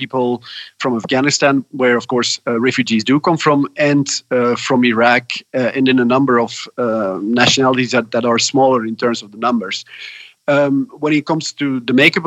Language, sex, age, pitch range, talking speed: German, male, 40-59, 120-140 Hz, 190 wpm